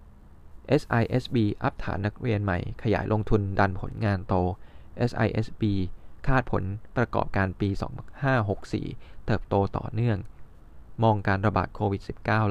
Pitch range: 95-115 Hz